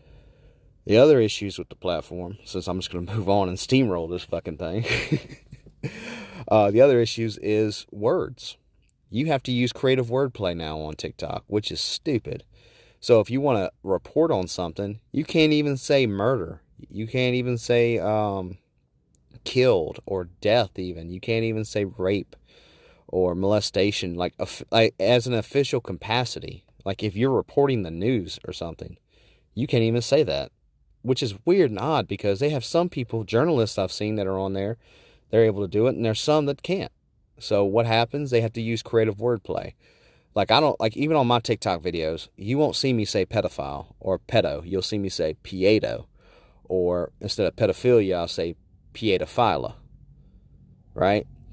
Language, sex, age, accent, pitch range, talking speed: English, male, 30-49, American, 95-125 Hz, 175 wpm